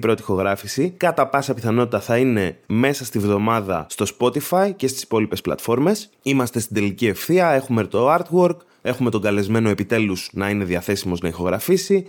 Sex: male